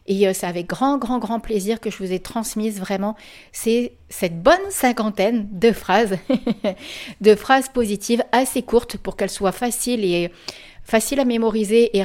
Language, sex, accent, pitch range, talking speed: French, female, French, 195-235 Hz, 160 wpm